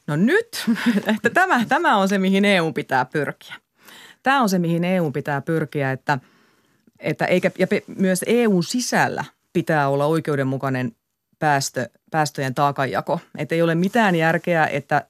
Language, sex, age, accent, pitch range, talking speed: Finnish, female, 30-49, native, 150-205 Hz, 145 wpm